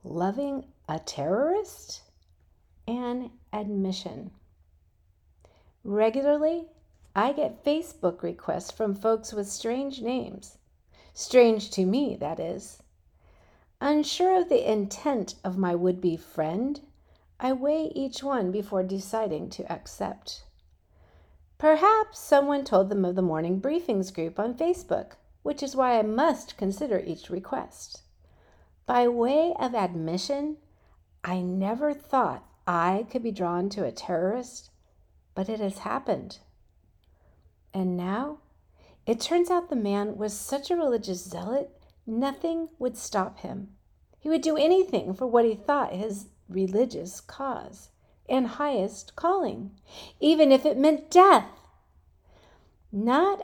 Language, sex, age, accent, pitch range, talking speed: English, female, 50-69, American, 175-275 Hz, 120 wpm